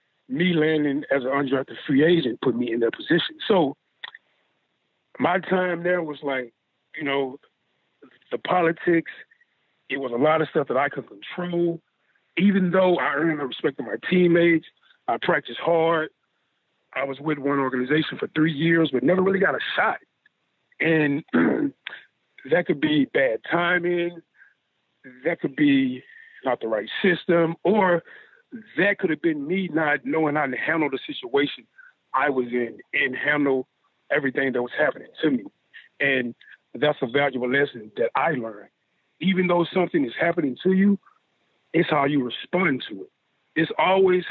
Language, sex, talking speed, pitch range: English, male, 160 wpm, 140-190 Hz